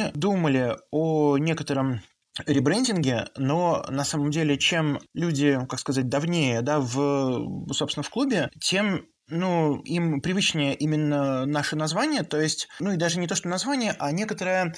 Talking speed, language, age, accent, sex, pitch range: 145 wpm, Russian, 20-39, native, male, 145-170 Hz